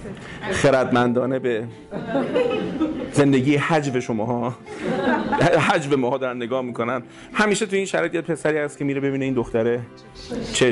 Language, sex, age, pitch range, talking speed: Persian, male, 30-49, 115-150 Hz, 120 wpm